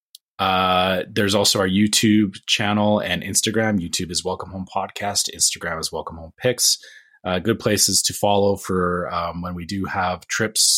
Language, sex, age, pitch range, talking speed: English, male, 30-49, 90-105 Hz, 165 wpm